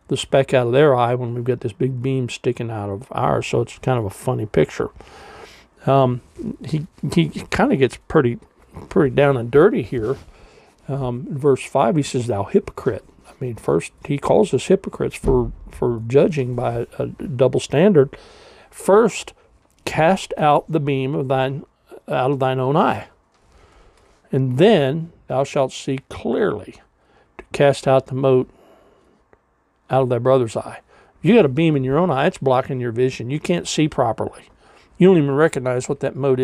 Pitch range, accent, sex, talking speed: 125-145 Hz, American, male, 180 wpm